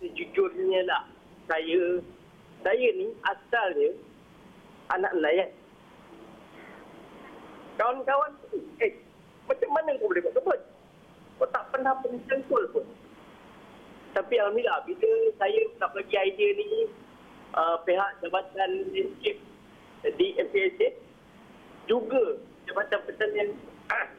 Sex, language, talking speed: male, Malay, 95 wpm